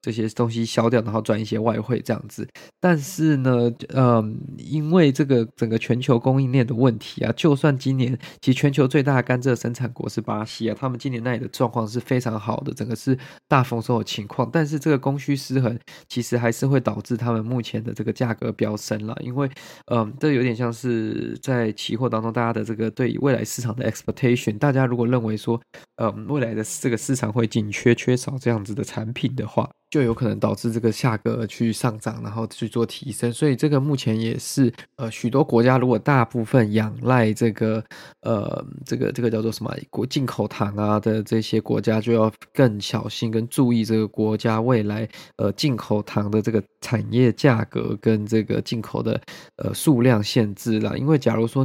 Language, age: Chinese, 20-39